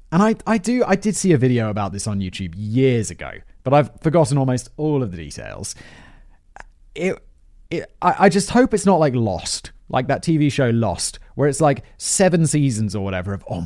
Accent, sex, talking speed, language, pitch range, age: British, male, 205 wpm, English, 100-150 Hz, 30-49